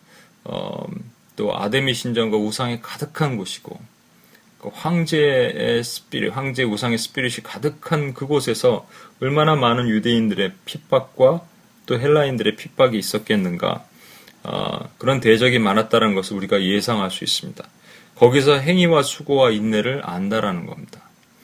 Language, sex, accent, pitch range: Korean, male, native, 110-150 Hz